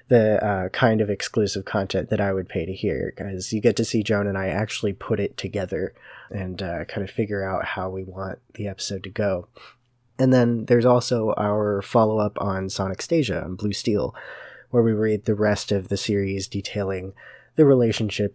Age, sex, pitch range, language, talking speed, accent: 20-39, male, 100-125 Hz, English, 195 wpm, American